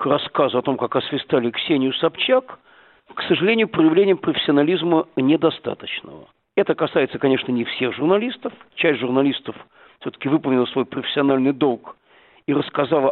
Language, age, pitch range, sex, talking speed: Russian, 50-69, 140-180 Hz, male, 135 wpm